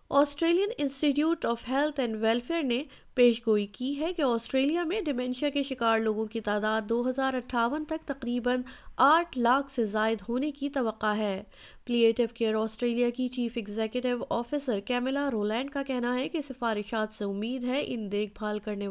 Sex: female